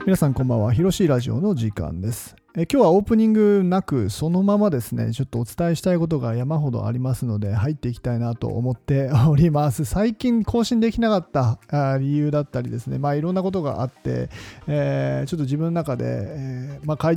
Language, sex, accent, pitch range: Japanese, male, native, 125-175 Hz